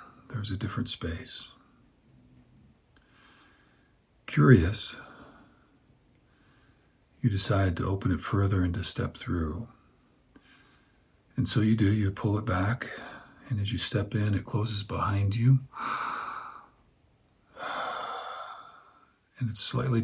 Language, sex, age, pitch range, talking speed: English, male, 50-69, 95-120 Hz, 105 wpm